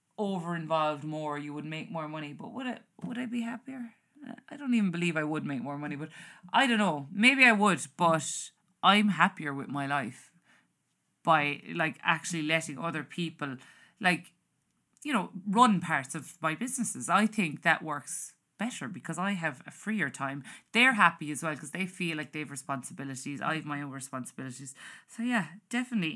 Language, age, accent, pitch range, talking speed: English, 30-49, Irish, 150-210 Hz, 185 wpm